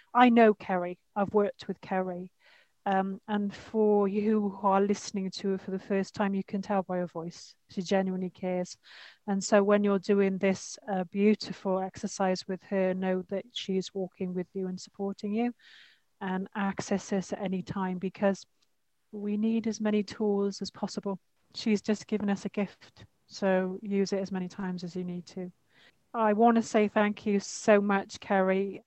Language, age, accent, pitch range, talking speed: English, 30-49, British, 190-210 Hz, 180 wpm